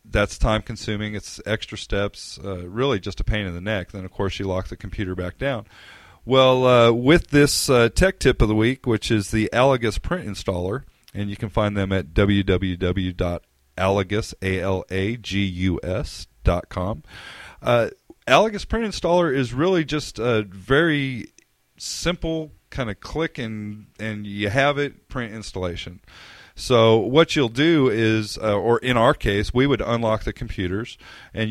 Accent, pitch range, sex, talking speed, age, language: American, 100-130 Hz, male, 145 wpm, 40-59, English